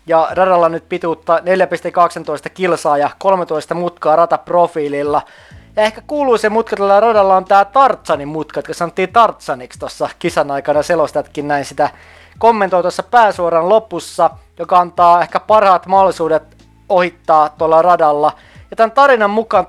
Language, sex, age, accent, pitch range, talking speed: Finnish, male, 20-39, native, 160-205 Hz, 135 wpm